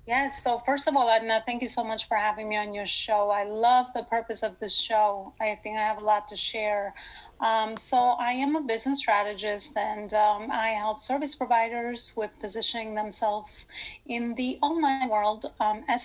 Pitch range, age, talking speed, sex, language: 215-235 Hz, 30-49, 200 wpm, female, English